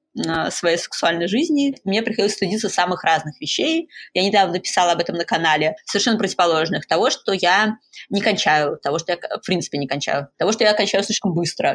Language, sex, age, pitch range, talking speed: Russian, female, 20-39, 170-220 Hz, 185 wpm